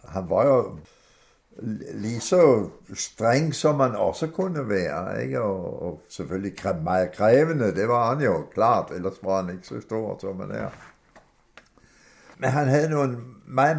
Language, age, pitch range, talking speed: Danish, 60-79, 100-140 Hz, 150 wpm